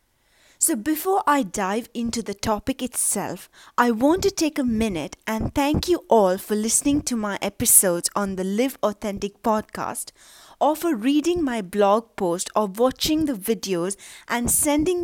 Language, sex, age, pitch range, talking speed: English, female, 30-49, 200-270 Hz, 160 wpm